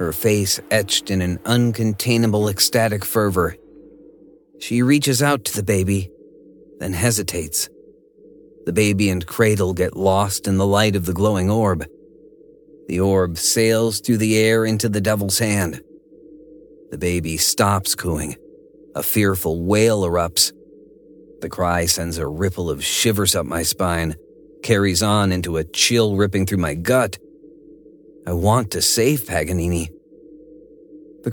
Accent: American